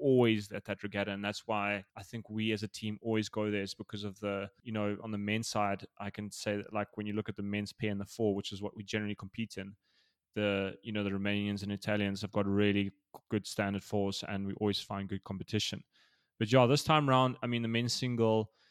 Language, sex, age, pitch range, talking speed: English, male, 20-39, 105-115 Hz, 250 wpm